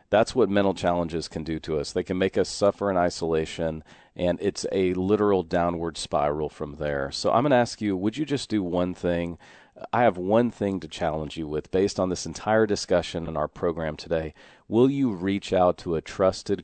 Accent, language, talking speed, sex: American, English, 215 wpm, male